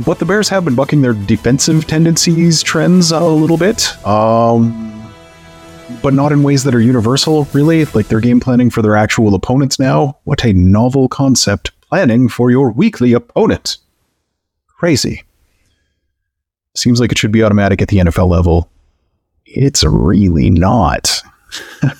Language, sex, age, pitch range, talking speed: English, male, 30-49, 90-130 Hz, 145 wpm